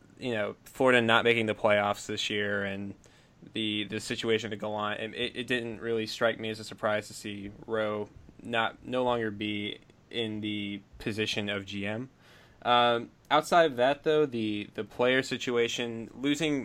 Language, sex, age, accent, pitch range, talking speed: English, male, 10-29, American, 105-120 Hz, 170 wpm